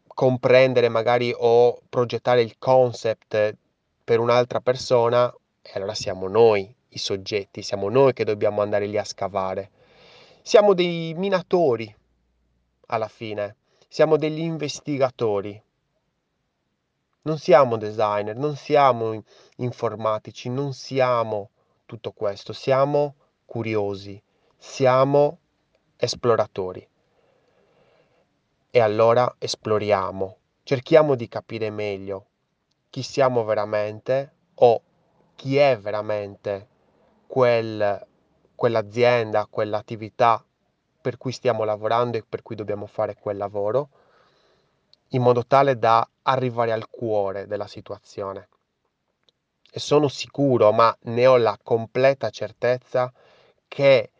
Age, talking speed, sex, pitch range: 30-49, 100 wpm, male, 105-135 Hz